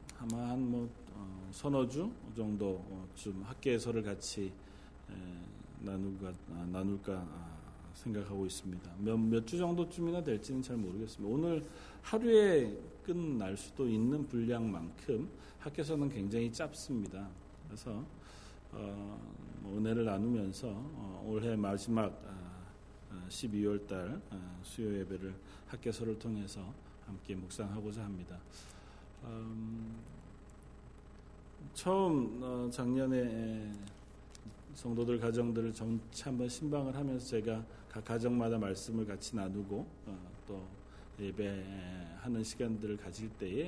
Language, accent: Korean, native